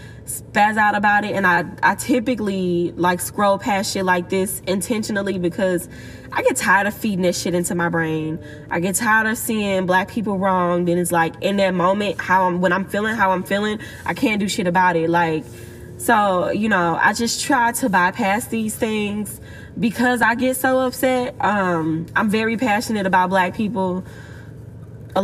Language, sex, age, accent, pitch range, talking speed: English, female, 10-29, American, 175-215 Hz, 185 wpm